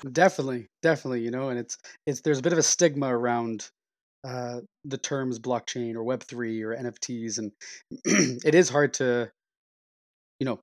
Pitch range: 115-145 Hz